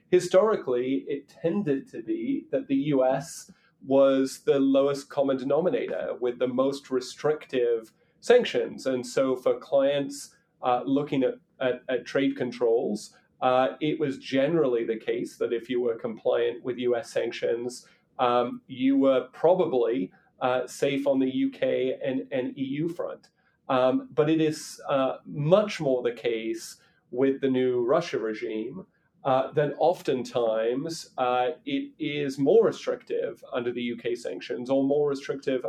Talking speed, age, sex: 140 wpm, 30-49, male